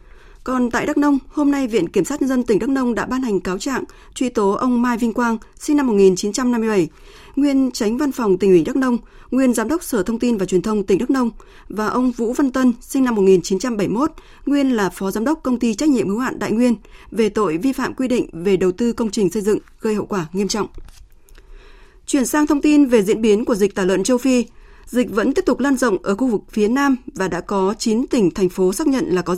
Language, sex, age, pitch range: Vietnamese, female, 20-39, 200-265 Hz